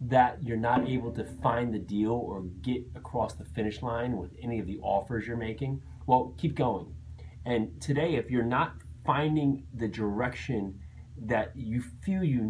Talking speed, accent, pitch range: 175 wpm, American, 105-135 Hz